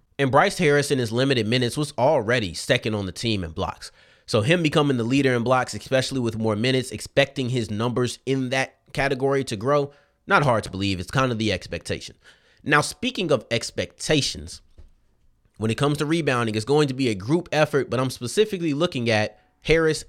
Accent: American